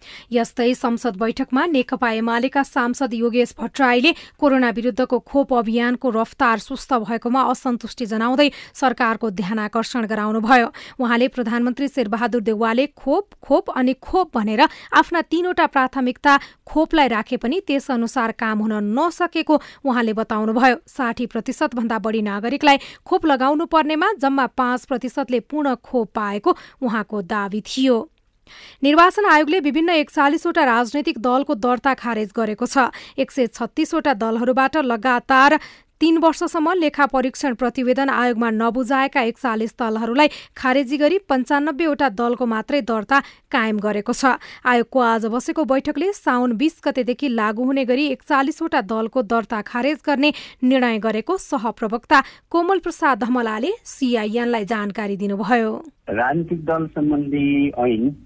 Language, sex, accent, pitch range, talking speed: English, female, Indian, 230-285 Hz, 80 wpm